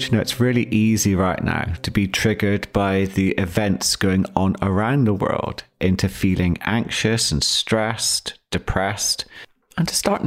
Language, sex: English, male